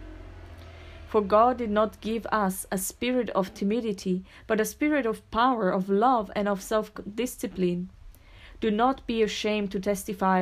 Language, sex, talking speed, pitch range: English, female, 150 wpm, 190-230 Hz